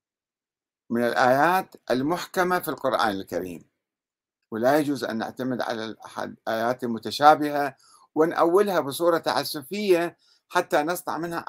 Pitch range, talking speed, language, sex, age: 120-170 Hz, 100 wpm, Arabic, male, 50-69